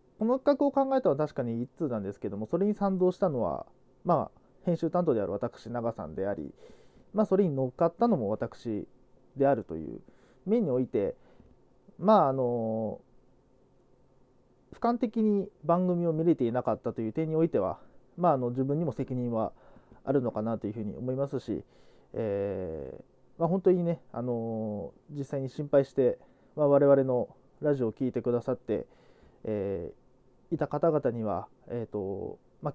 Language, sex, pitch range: Japanese, male, 120-165 Hz